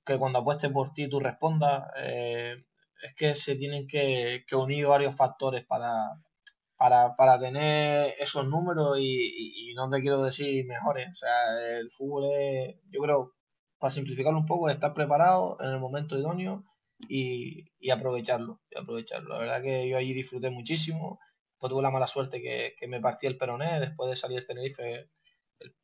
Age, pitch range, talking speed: 20-39, 125-150 Hz, 175 wpm